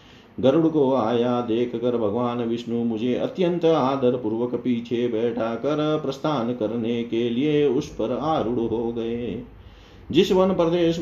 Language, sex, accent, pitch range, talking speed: Hindi, male, native, 120-145 Hz, 140 wpm